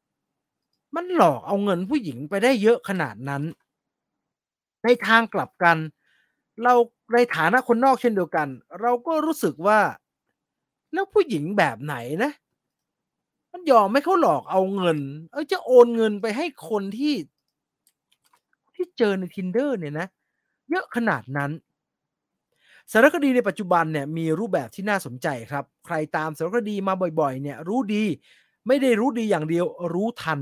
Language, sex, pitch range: English, male, 160-235 Hz